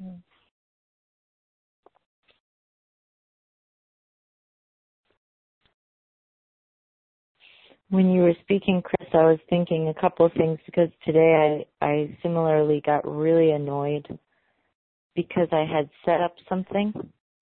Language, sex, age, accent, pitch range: English, female, 30-49, American, 150-175 Hz